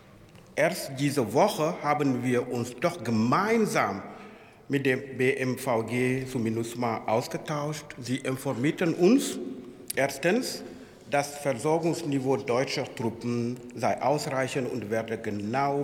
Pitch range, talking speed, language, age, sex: 120-165 Hz, 105 wpm, German, 60-79, male